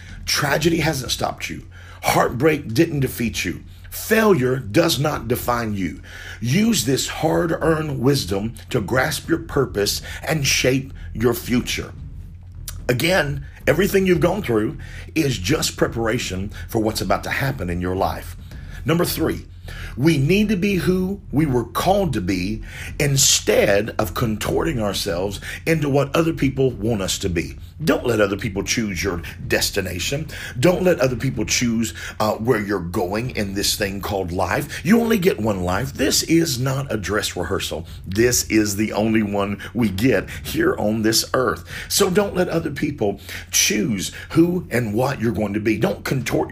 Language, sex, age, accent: English, male, 50-69, American